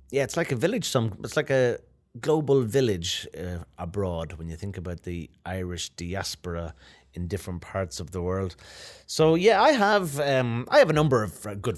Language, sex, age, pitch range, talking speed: Russian, male, 30-49, 95-125 Hz, 190 wpm